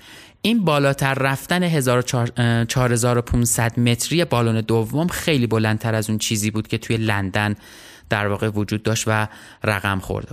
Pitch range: 115-140 Hz